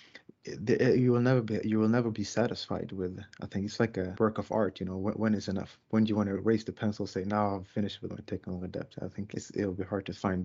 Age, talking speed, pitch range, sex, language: 30-49, 285 wpm, 100-115 Hz, male, English